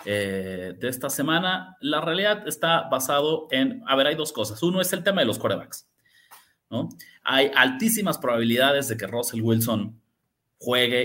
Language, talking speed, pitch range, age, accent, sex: Spanish, 165 wpm, 115-185 Hz, 30-49, Mexican, male